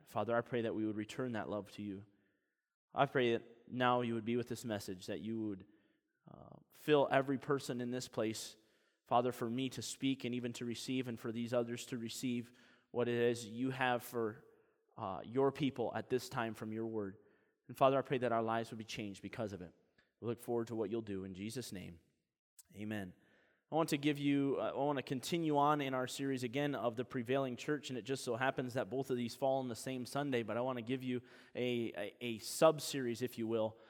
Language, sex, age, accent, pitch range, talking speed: English, male, 20-39, American, 120-155 Hz, 230 wpm